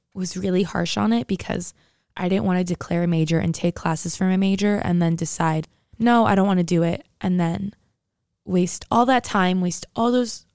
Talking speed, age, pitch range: 215 wpm, 20-39, 170-210 Hz